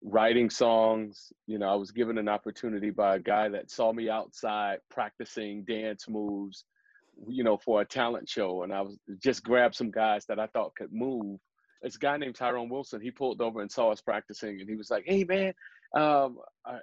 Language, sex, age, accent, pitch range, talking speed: English, male, 40-59, American, 105-125 Hz, 200 wpm